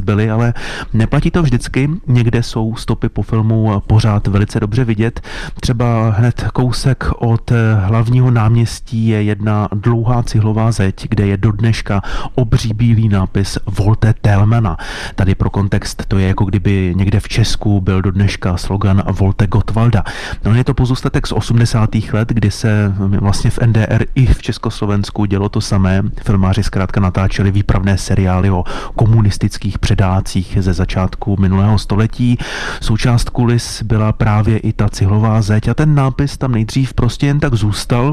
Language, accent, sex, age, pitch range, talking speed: Czech, native, male, 30-49, 100-120 Hz, 150 wpm